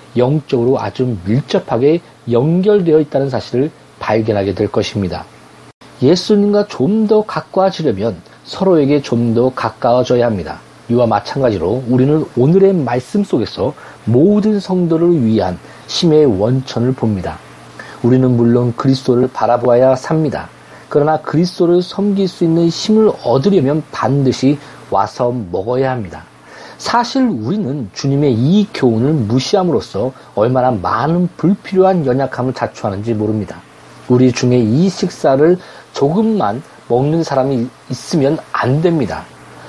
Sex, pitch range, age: male, 120-170 Hz, 40-59